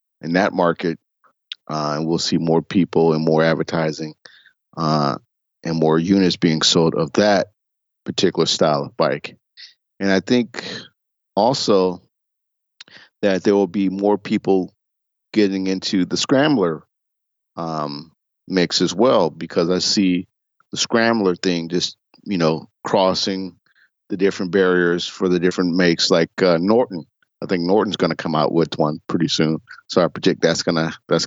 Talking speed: 150 wpm